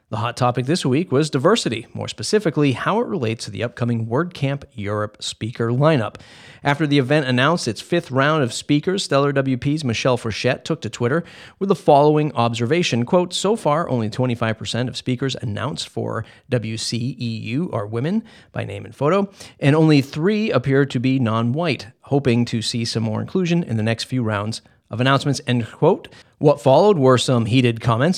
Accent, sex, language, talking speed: American, male, English, 175 wpm